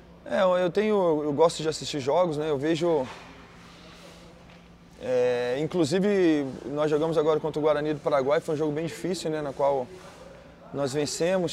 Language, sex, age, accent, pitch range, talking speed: Portuguese, male, 20-39, Brazilian, 145-175 Hz, 160 wpm